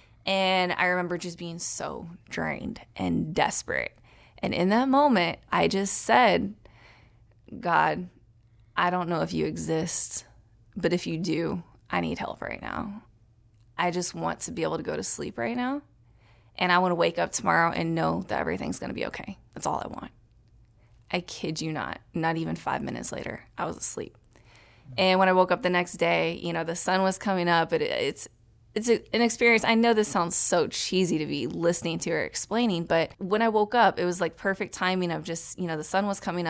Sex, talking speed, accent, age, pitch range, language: female, 205 wpm, American, 20-39, 115-190 Hz, English